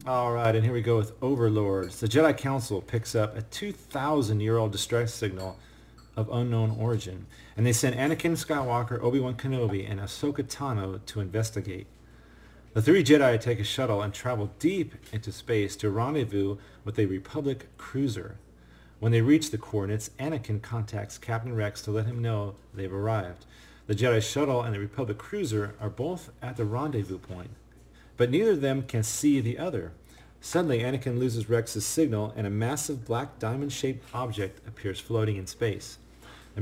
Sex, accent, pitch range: male, American, 100-125 Hz